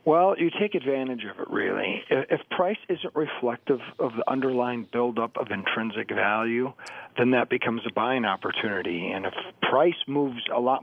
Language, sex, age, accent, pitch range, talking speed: English, male, 40-59, American, 120-155 Hz, 165 wpm